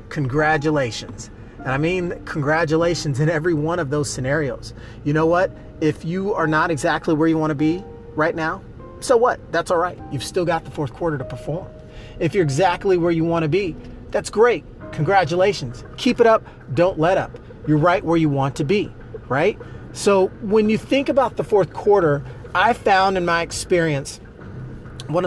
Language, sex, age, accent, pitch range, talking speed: English, male, 30-49, American, 130-180 Hz, 185 wpm